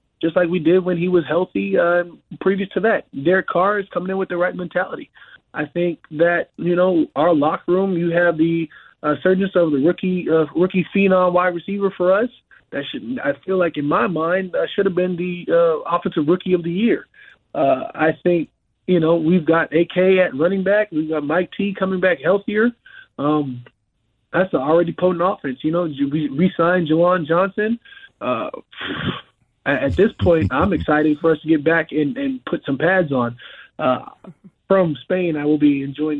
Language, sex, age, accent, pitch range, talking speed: English, male, 20-39, American, 155-185 Hz, 195 wpm